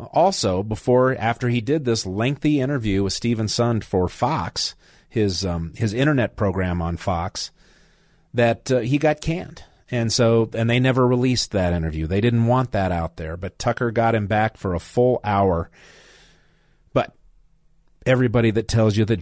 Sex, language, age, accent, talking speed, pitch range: male, English, 40-59, American, 170 wpm, 100-125 Hz